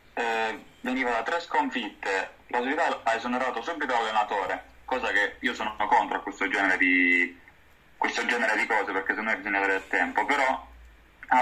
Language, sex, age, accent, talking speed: Italian, male, 30-49, native, 150 wpm